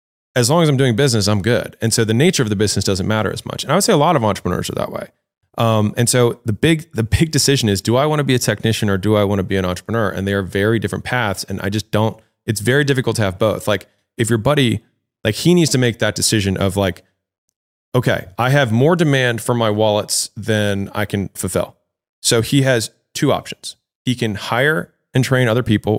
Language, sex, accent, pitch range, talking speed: English, male, American, 100-125 Hz, 245 wpm